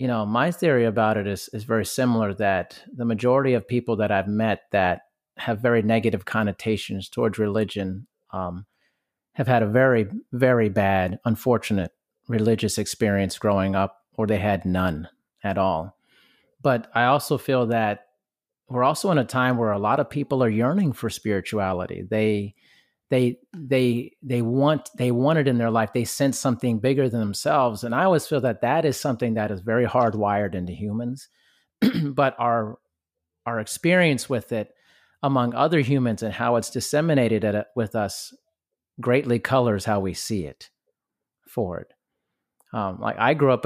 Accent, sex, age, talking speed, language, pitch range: American, male, 30-49, 170 wpm, English, 105-125 Hz